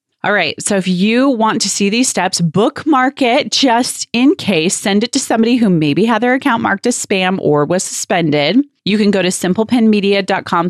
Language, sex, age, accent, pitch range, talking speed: English, female, 30-49, American, 160-210 Hz, 195 wpm